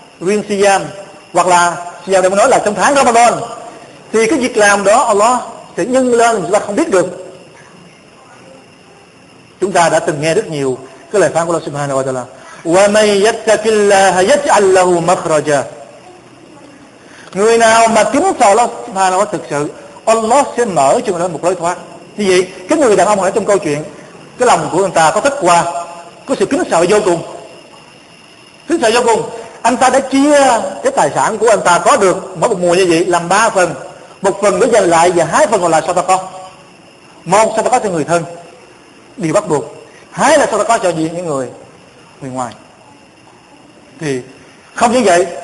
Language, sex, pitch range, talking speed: Vietnamese, male, 175-225 Hz, 200 wpm